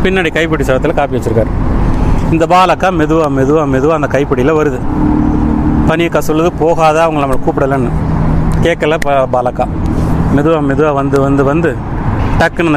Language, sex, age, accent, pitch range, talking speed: Tamil, male, 30-49, native, 125-160 Hz, 125 wpm